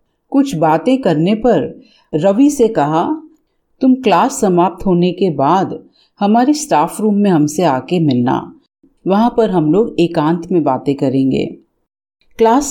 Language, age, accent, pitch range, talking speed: Hindi, 40-59, native, 160-240 Hz, 135 wpm